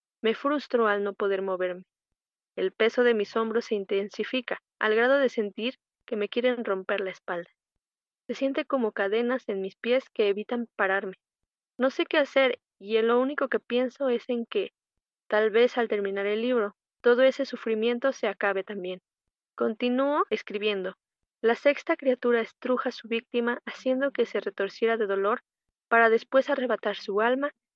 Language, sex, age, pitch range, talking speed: Spanish, female, 20-39, 205-250 Hz, 165 wpm